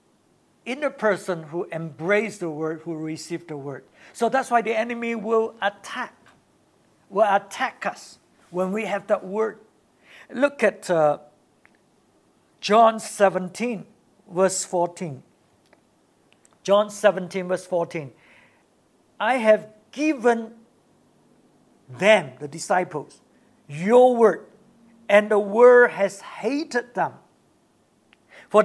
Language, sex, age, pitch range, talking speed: English, male, 60-79, 180-225 Hz, 110 wpm